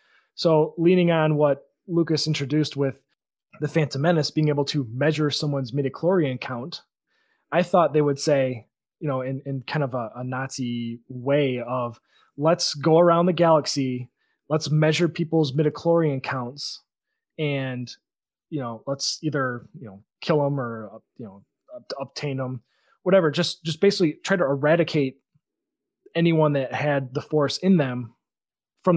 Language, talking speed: English, 150 wpm